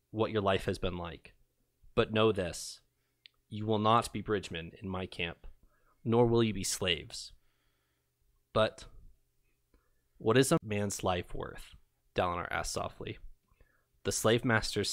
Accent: American